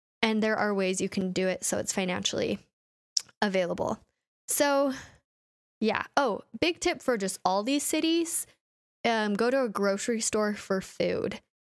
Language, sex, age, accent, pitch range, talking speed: English, female, 10-29, American, 195-235 Hz, 155 wpm